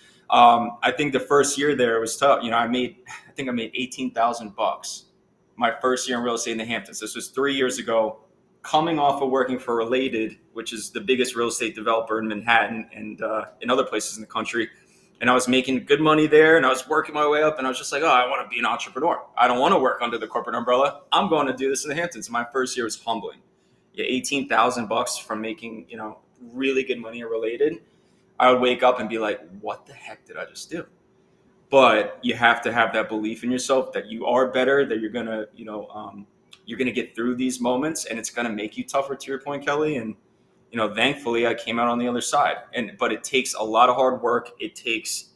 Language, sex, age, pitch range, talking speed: English, male, 20-39, 115-135 Hz, 250 wpm